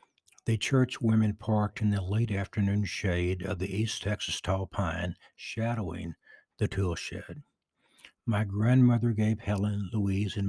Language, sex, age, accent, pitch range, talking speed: English, male, 60-79, American, 95-115 Hz, 145 wpm